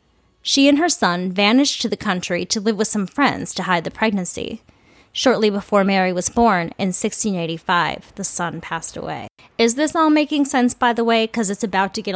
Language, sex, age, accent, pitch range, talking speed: English, female, 20-39, American, 180-245 Hz, 200 wpm